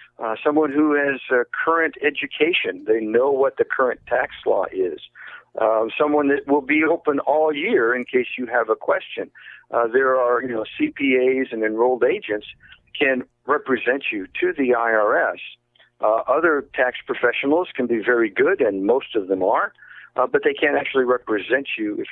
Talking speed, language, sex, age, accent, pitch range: 175 wpm, English, male, 50-69, American, 120-165 Hz